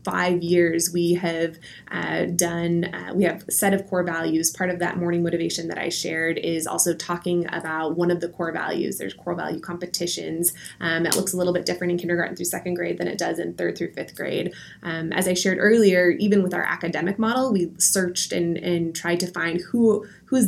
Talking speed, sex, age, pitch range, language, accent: 215 wpm, female, 20-39, 170-185 Hz, English, American